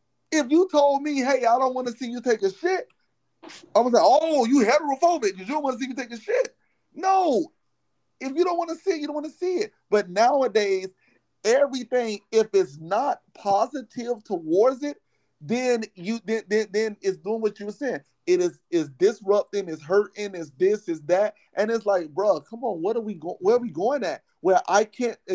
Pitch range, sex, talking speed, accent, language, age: 210-280 Hz, male, 220 wpm, American, English, 30-49